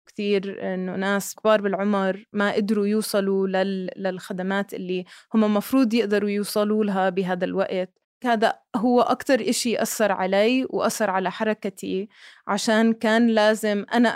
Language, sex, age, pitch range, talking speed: Arabic, female, 20-39, 190-220 Hz, 125 wpm